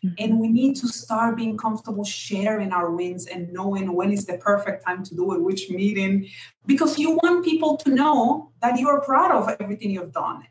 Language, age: English, 30-49